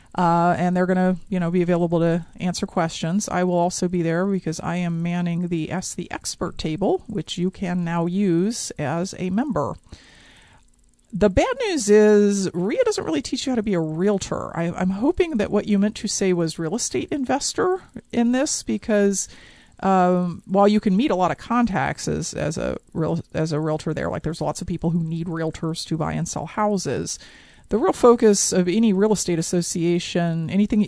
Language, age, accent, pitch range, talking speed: English, 40-59, American, 170-205 Hz, 200 wpm